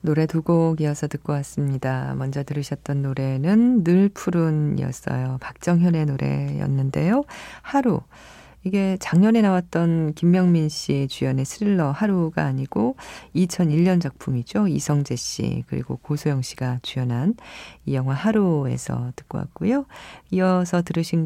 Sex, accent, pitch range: female, native, 135-185 Hz